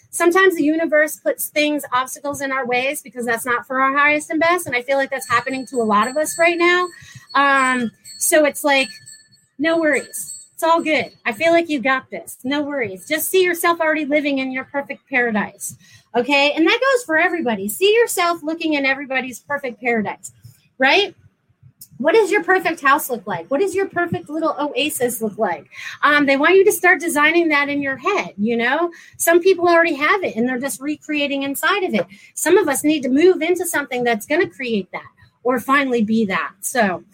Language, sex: English, female